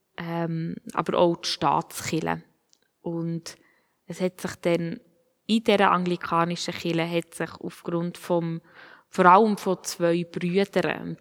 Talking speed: 110 wpm